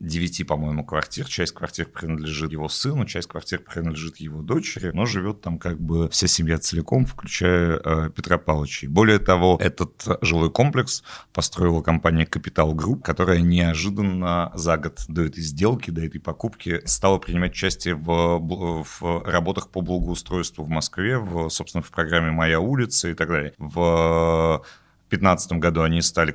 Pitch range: 80-90 Hz